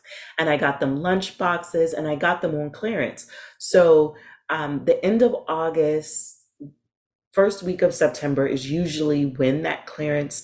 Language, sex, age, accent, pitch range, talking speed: English, female, 30-49, American, 140-180 Hz, 155 wpm